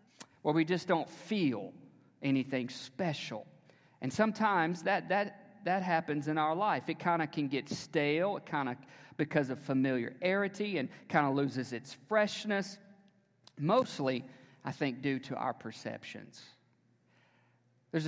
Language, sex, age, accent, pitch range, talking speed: English, male, 40-59, American, 135-165 Hz, 135 wpm